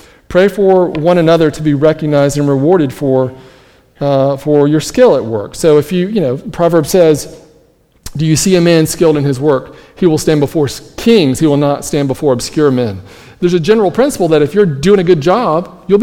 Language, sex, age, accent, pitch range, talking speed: English, male, 40-59, American, 130-170 Hz, 210 wpm